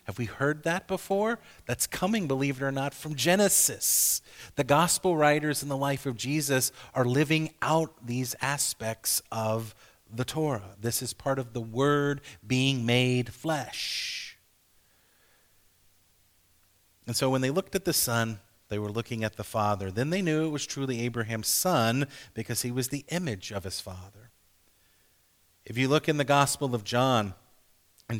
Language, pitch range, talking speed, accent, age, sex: English, 100-140 Hz, 165 wpm, American, 40-59, male